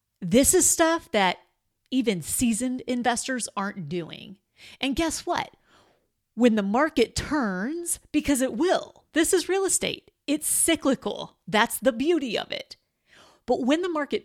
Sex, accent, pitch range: female, American, 205-295 Hz